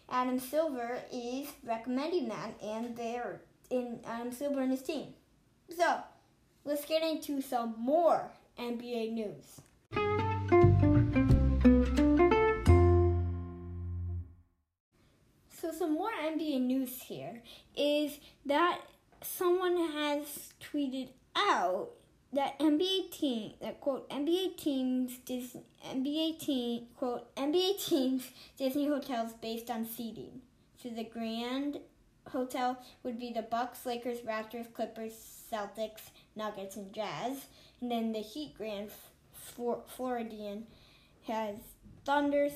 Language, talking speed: English, 105 wpm